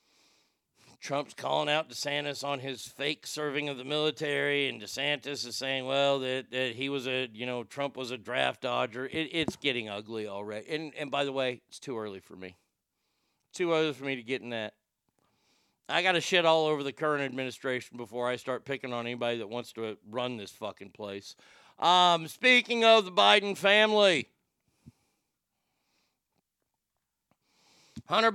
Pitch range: 135-195 Hz